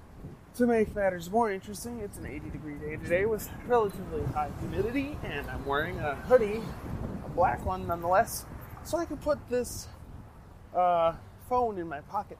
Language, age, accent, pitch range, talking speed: English, 20-39, American, 155-235 Hz, 165 wpm